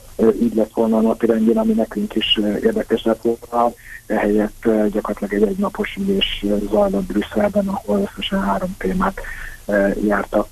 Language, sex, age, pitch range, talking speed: Hungarian, male, 50-69, 105-125 Hz, 135 wpm